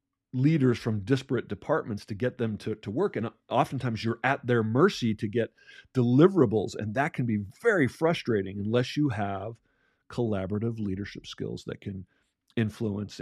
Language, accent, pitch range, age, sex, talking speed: English, American, 105-135 Hz, 40-59, male, 155 wpm